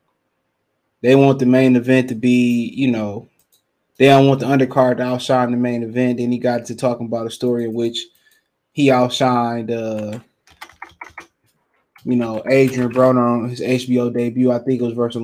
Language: English